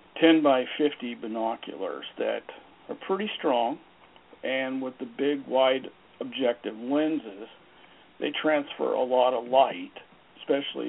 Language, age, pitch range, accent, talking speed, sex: English, 60-79, 135-210 Hz, American, 120 wpm, male